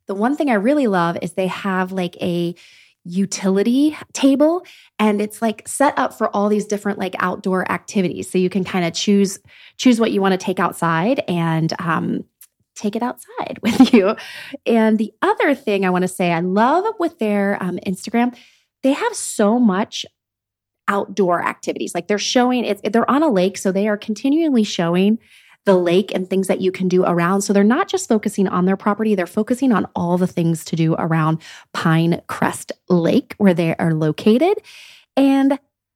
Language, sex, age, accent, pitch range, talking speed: English, female, 30-49, American, 185-235 Hz, 185 wpm